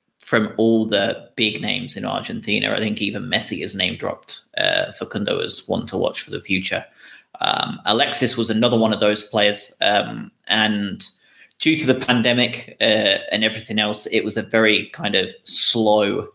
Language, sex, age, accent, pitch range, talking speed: English, male, 20-39, British, 105-120 Hz, 175 wpm